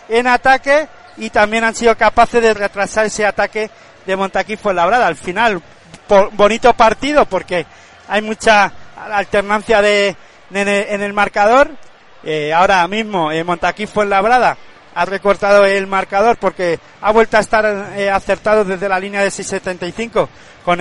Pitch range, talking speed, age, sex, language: 190-225 Hz, 155 wpm, 40-59, male, Spanish